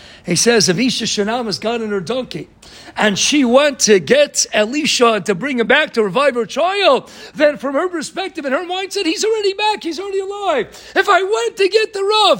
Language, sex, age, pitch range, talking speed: English, male, 50-69, 220-315 Hz, 210 wpm